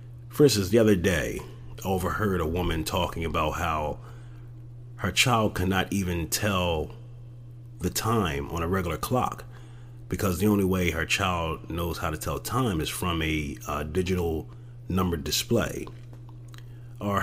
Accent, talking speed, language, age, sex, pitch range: American, 145 wpm, English, 30-49, male, 85-120 Hz